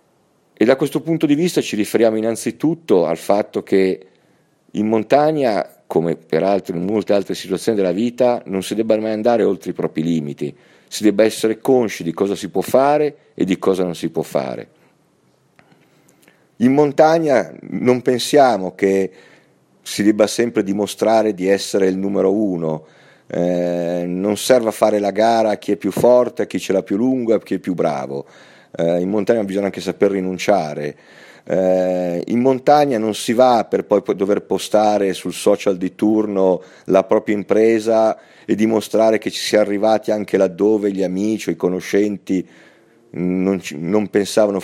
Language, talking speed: Italian, 165 wpm